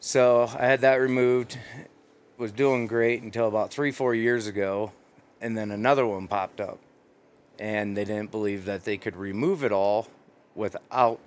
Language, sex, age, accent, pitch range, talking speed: English, male, 30-49, American, 100-120 Hz, 165 wpm